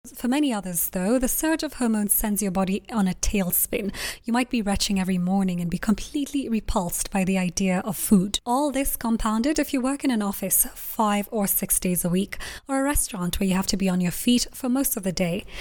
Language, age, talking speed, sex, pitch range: English, 20-39, 230 wpm, female, 190-240 Hz